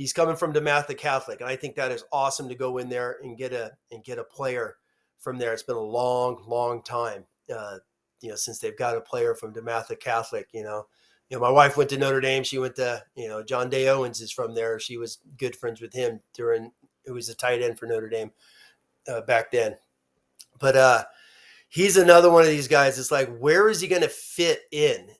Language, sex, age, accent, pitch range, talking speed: English, male, 30-49, American, 125-190 Hz, 230 wpm